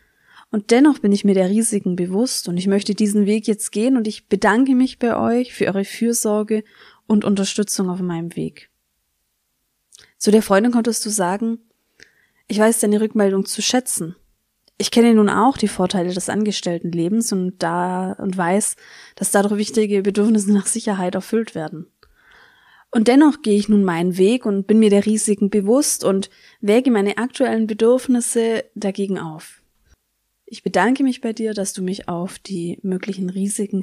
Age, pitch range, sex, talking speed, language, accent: 20-39, 190-230 Hz, female, 165 wpm, German, German